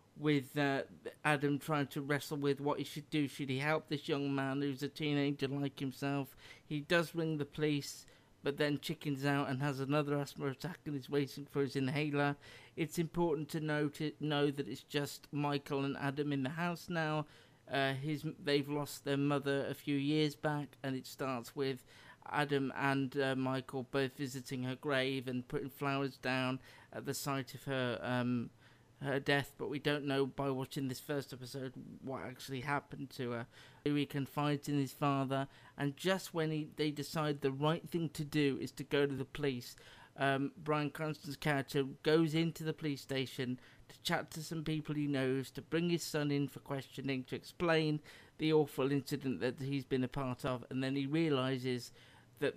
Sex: male